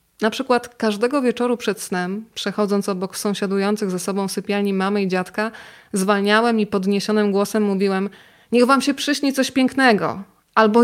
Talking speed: 150 wpm